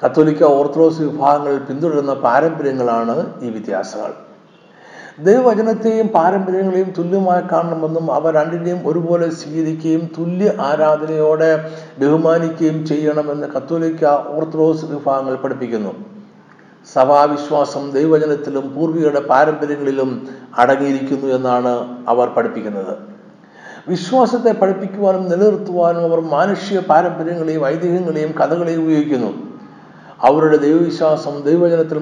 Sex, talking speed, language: male, 80 wpm, Malayalam